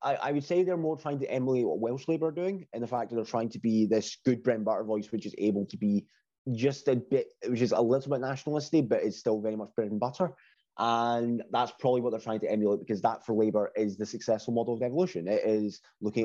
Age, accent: 20-39, British